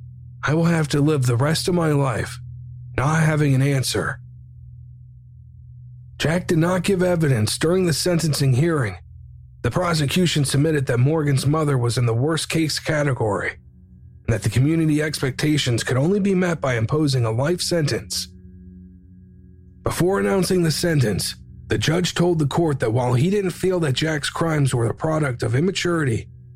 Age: 40-59